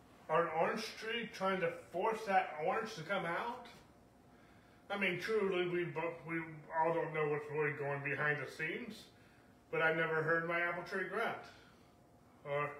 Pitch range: 140-180 Hz